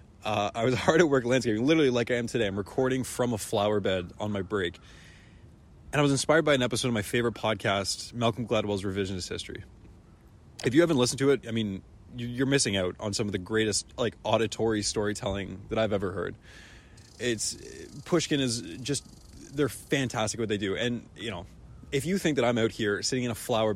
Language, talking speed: English, 205 wpm